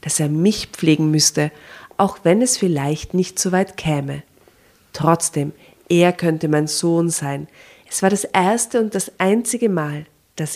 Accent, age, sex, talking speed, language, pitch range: German, 40-59, female, 160 wpm, German, 150-185 Hz